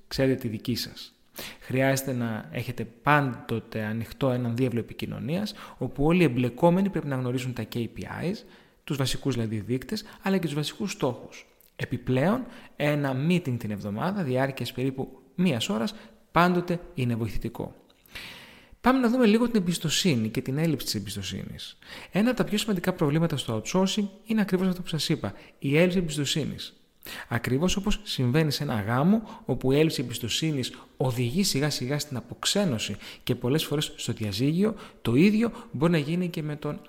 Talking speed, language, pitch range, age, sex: 160 wpm, Greek, 120-180 Hz, 30-49, male